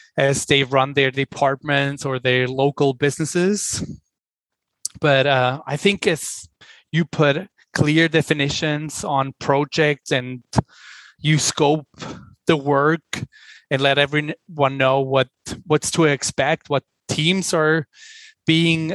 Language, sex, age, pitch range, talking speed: English, male, 20-39, 135-155 Hz, 115 wpm